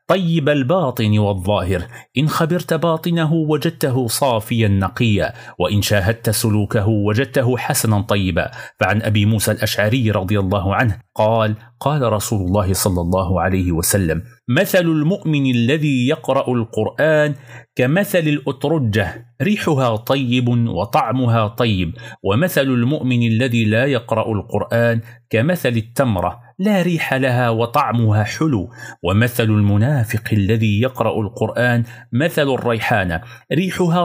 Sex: male